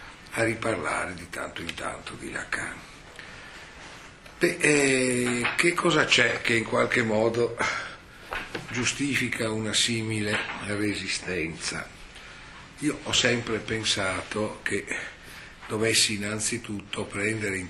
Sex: male